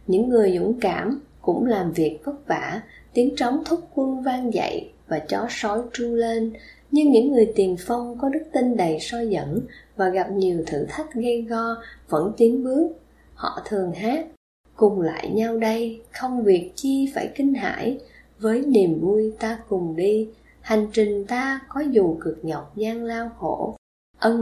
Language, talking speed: Vietnamese, 175 wpm